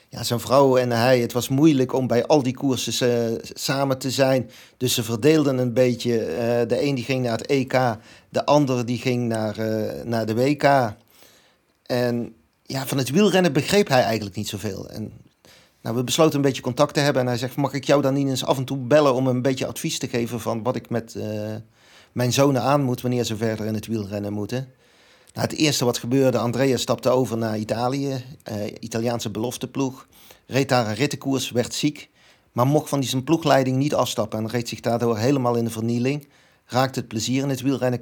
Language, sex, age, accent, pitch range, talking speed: Dutch, male, 40-59, Dutch, 115-135 Hz, 210 wpm